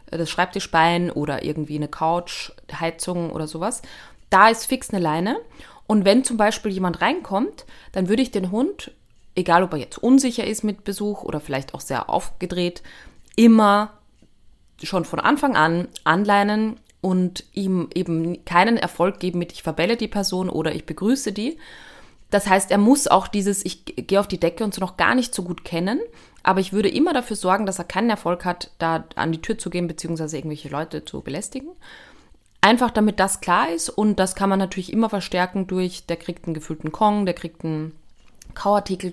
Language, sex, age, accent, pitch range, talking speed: German, female, 30-49, German, 160-205 Hz, 185 wpm